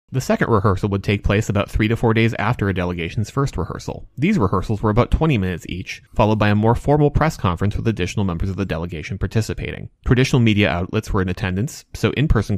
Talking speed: 215 wpm